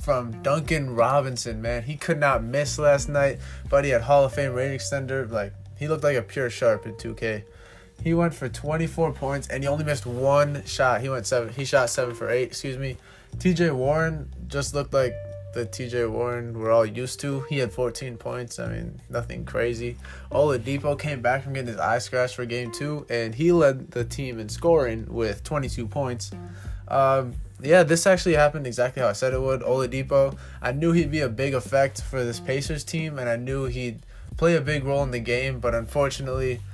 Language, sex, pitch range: English, male, 115-140 Hz